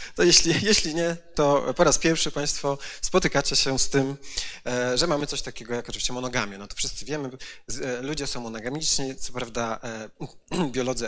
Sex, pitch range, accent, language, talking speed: male, 110-135 Hz, native, Polish, 160 wpm